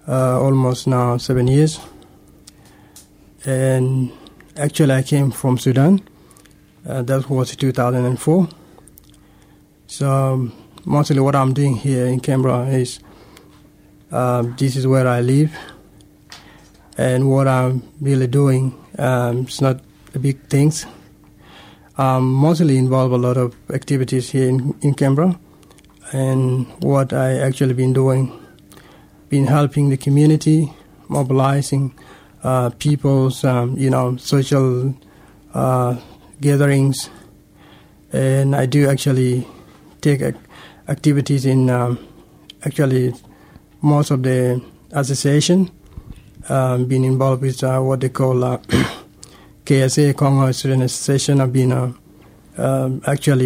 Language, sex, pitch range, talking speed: English, male, 130-140 Hz, 115 wpm